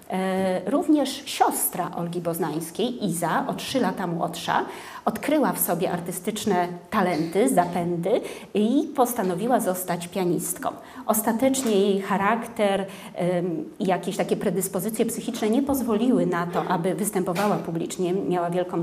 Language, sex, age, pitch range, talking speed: Polish, female, 30-49, 180-250 Hz, 115 wpm